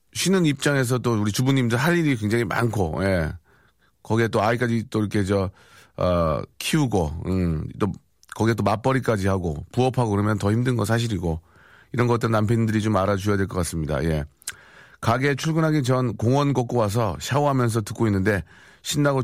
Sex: male